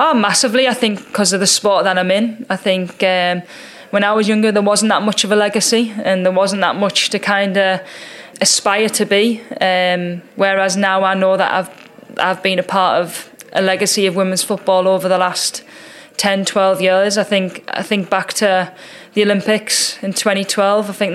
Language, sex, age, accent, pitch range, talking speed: English, female, 10-29, British, 190-205 Hz, 225 wpm